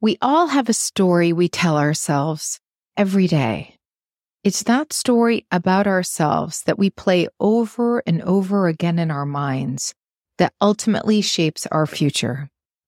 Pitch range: 155-205 Hz